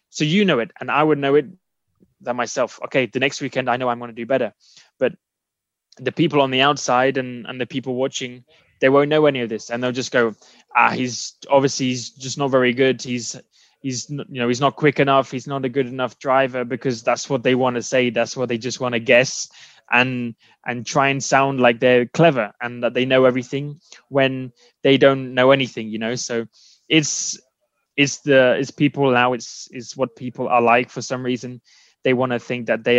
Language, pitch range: English, 125-140 Hz